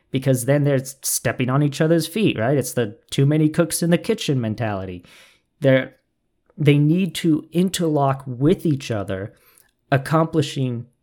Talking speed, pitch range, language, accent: 145 wpm, 120-155 Hz, English, American